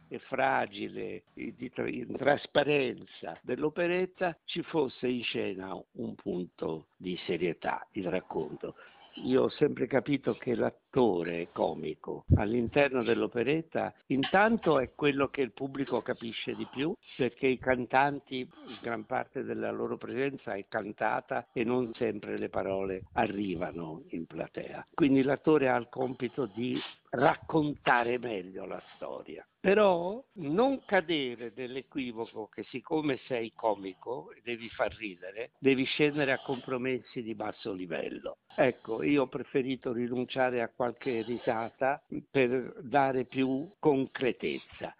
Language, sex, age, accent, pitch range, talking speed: Italian, male, 60-79, native, 115-150 Hz, 125 wpm